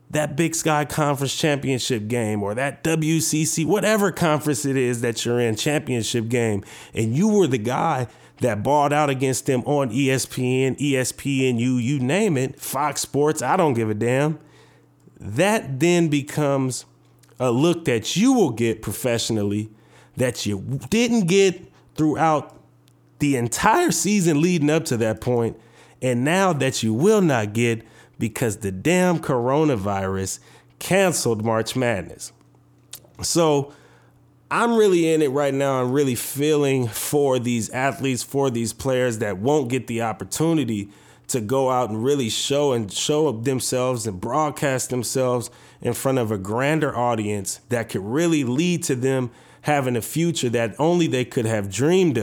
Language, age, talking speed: English, 30-49, 155 wpm